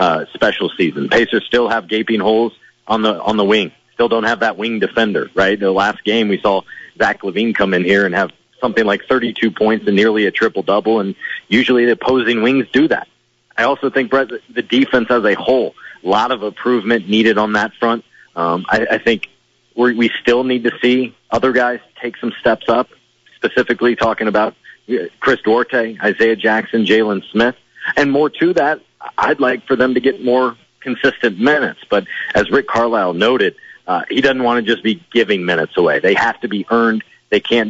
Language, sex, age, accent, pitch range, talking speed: English, male, 40-59, American, 105-120 Hz, 195 wpm